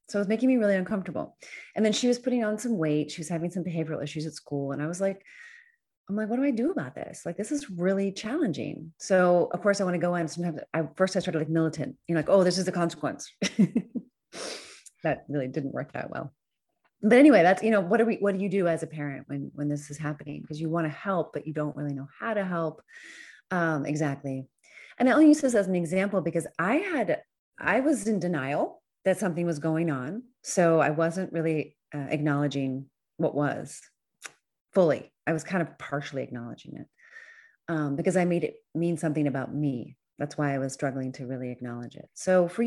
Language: English